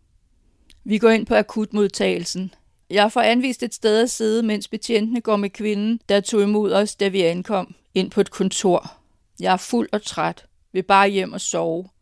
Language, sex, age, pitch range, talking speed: Danish, female, 50-69, 180-210 Hz, 190 wpm